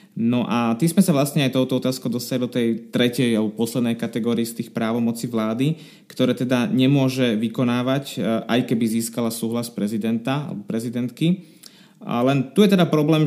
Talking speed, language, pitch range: 165 wpm, Slovak, 115-135 Hz